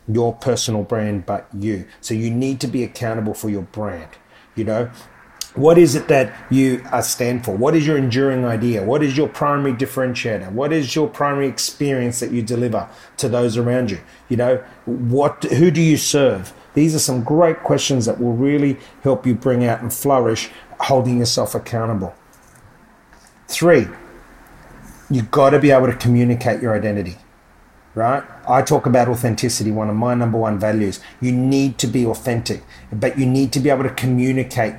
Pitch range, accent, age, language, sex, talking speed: 110-140 Hz, Australian, 30-49, English, male, 175 wpm